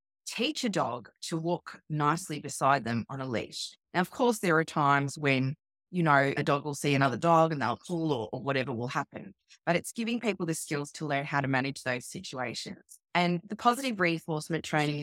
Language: English